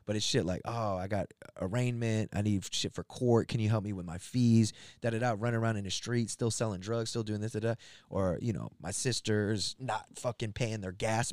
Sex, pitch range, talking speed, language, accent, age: male, 95-115 Hz, 220 wpm, English, American, 20-39